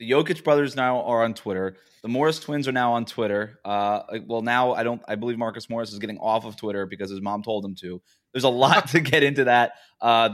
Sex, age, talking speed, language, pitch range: male, 20-39, 245 wpm, English, 110-140 Hz